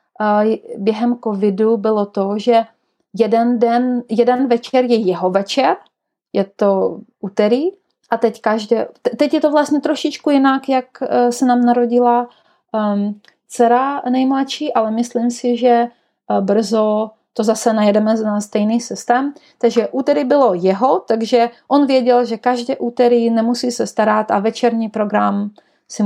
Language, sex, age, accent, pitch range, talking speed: Czech, female, 30-49, native, 225-265 Hz, 140 wpm